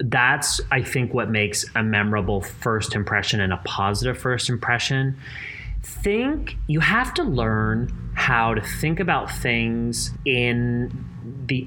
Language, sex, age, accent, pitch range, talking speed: English, male, 30-49, American, 100-130 Hz, 135 wpm